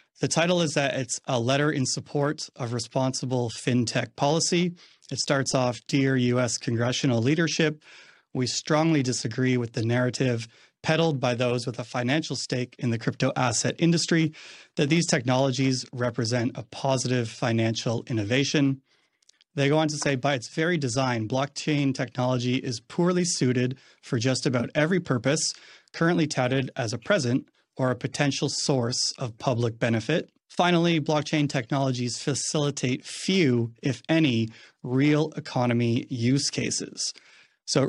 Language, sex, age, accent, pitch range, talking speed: English, male, 30-49, American, 120-145 Hz, 140 wpm